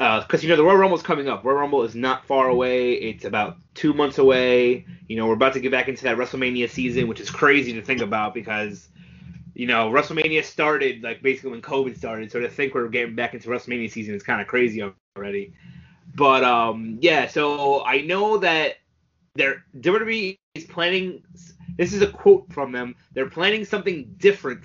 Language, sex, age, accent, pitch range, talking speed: English, male, 20-39, American, 130-180 Hz, 200 wpm